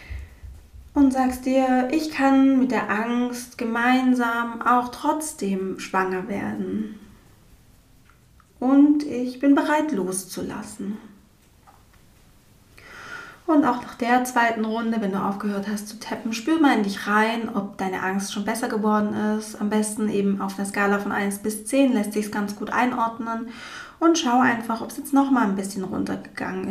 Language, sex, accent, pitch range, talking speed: German, female, German, 210-255 Hz, 155 wpm